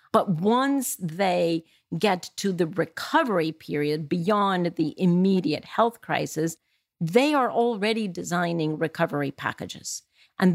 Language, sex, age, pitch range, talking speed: English, female, 50-69, 165-210 Hz, 115 wpm